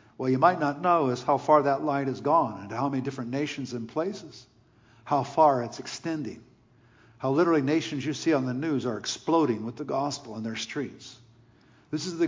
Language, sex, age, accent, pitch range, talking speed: English, male, 50-69, American, 125-155 Hz, 205 wpm